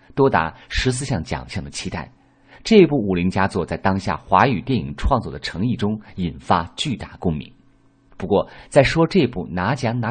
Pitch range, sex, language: 95-140 Hz, male, Chinese